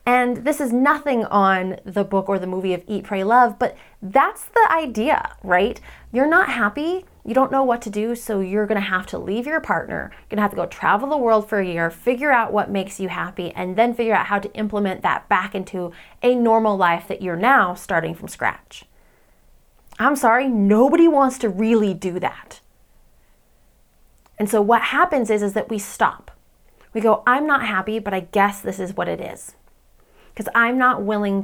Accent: American